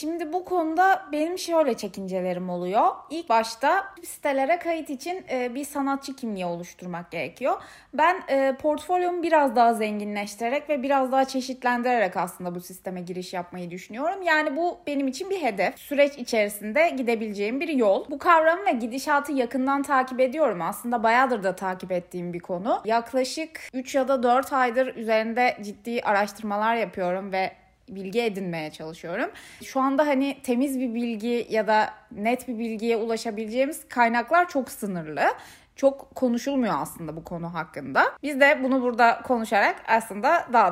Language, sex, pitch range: Turkish, female, 210-290 Hz